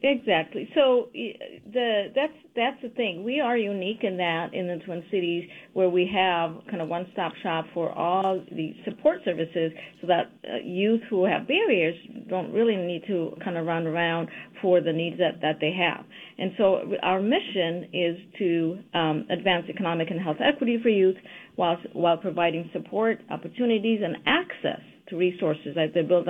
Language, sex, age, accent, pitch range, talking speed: English, female, 50-69, American, 165-205 Hz, 170 wpm